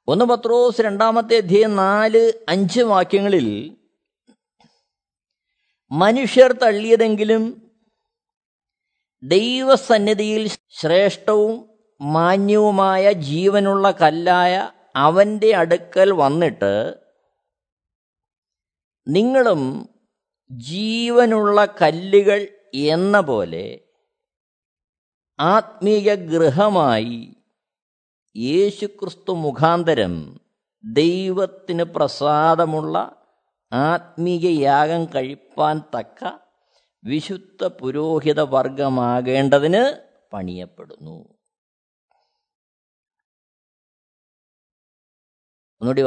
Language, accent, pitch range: Malayalam, native, 155-225 Hz